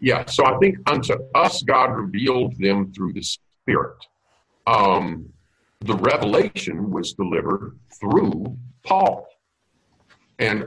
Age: 50-69